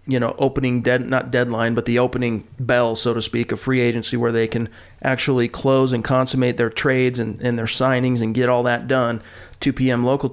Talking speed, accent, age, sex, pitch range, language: 215 wpm, American, 40-59, male, 115-130 Hz, English